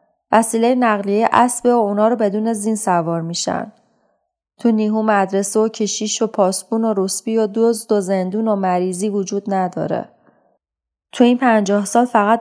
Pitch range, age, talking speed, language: 195-225 Hz, 30-49, 150 wpm, Persian